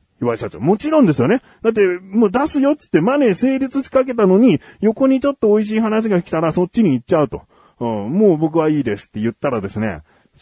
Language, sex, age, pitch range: Japanese, male, 40-59, 130-220 Hz